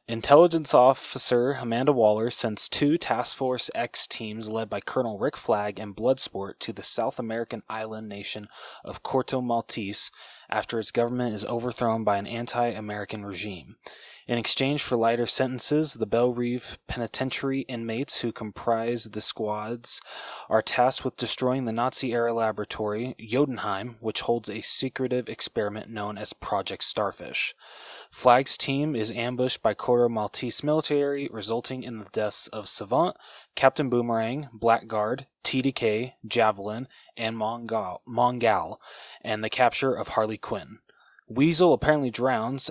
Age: 20-39